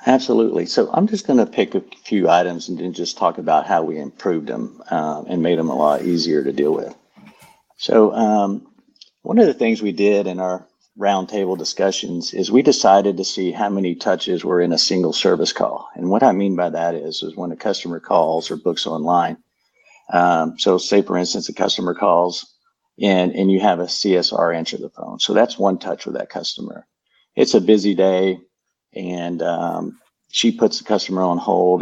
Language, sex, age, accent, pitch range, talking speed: English, male, 50-69, American, 90-100 Hz, 200 wpm